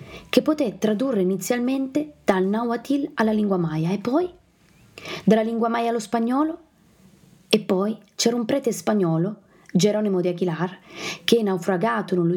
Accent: native